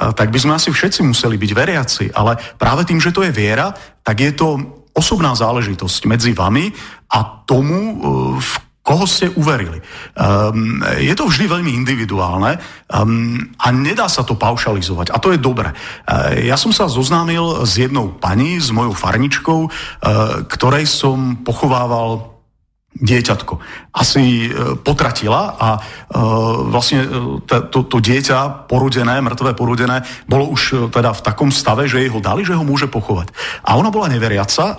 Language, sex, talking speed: Slovak, male, 145 wpm